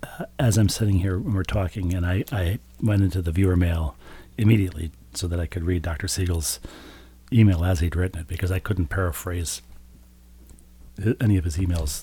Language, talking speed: English, 190 wpm